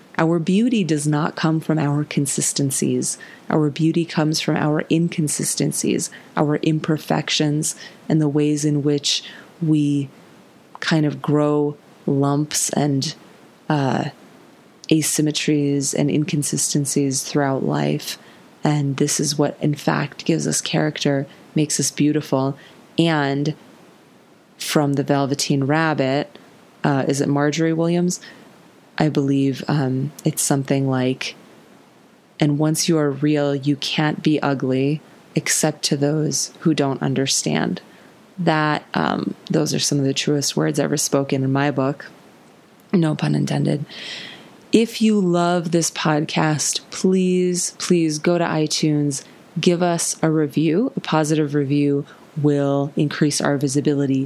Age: 20-39